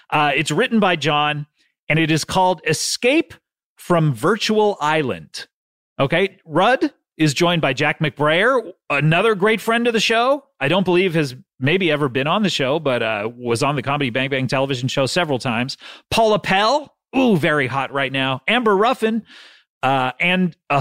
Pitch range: 140-200 Hz